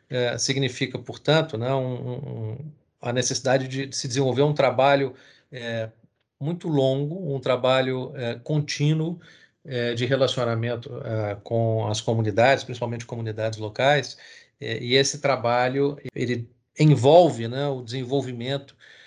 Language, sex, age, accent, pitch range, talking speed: Portuguese, male, 40-59, Brazilian, 115-135 Hz, 125 wpm